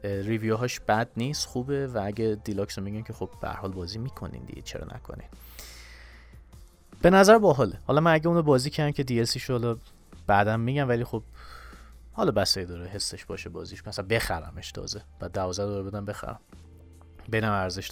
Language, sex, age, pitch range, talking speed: Persian, male, 30-49, 95-120 Hz, 165 wpm